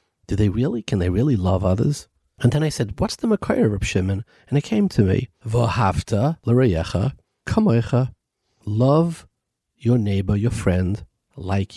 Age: 40-59